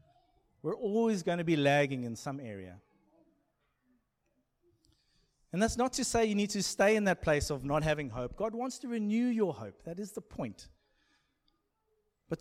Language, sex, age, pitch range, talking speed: English, male, 30-49, 150-225 Hz, 175 wpm